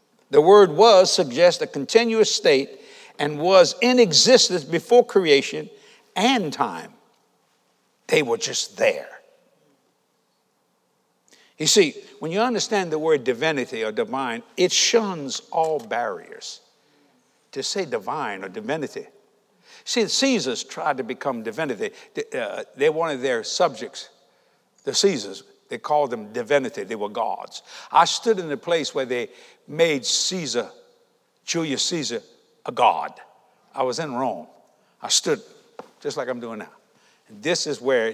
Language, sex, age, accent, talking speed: English, male, 60-79, American, 135 wpm